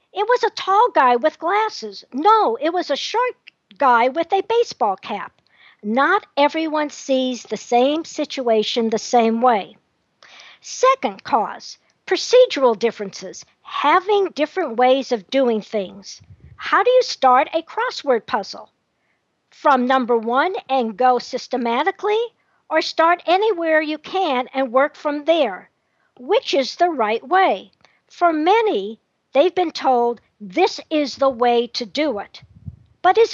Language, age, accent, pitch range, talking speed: English, 50-69, American, 245-360 Hz, 140 wpm